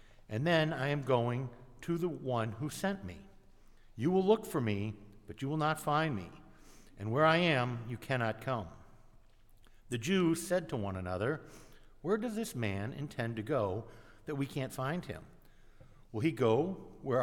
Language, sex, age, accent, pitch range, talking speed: English, male, 60-79, American, 110-160 Hz, 180 wpm